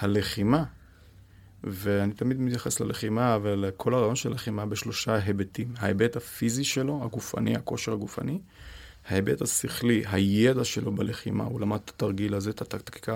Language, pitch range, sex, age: Hebrew, 100-125 Hz, male, 30-49